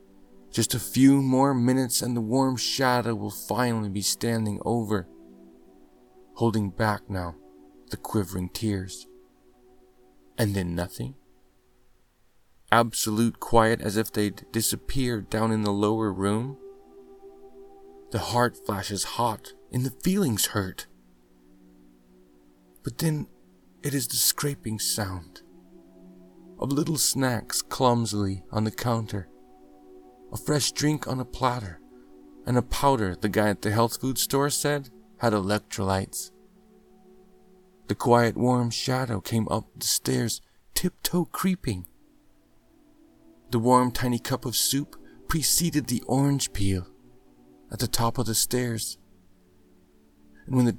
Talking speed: 125 wpm